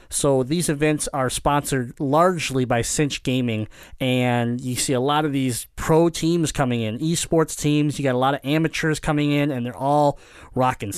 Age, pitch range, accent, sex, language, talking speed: 30-49, 125-150 Hz, American, male, English, 185 wpm